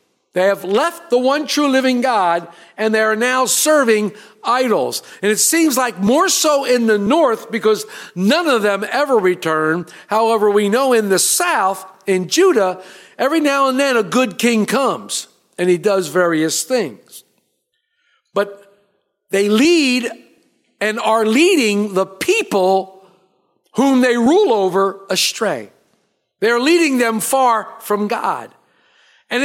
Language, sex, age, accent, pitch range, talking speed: English, male, 50-69, American, 180-255 Hz, 145 wpm